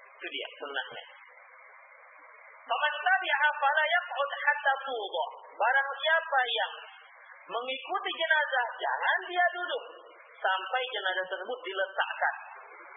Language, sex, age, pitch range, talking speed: Malay, male, 40-59, 185-300 Hz, 95 wpm